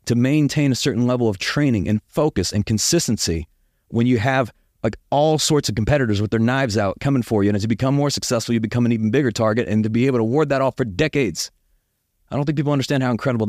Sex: male